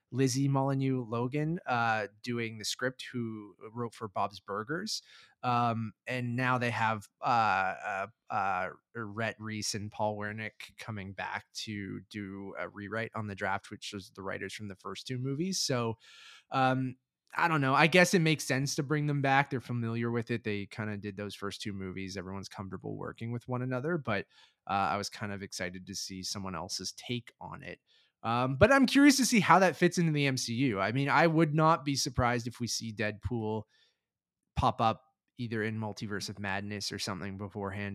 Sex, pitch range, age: male, 100-130 Hz, 20-39